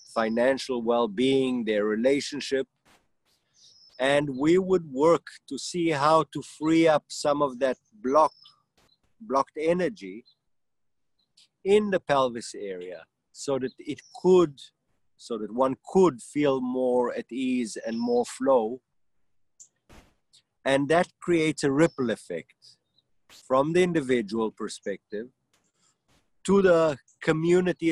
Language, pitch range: English, 130-170 Hz